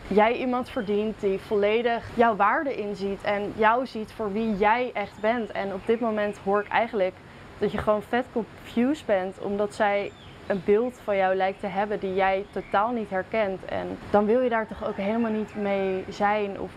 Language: Dutch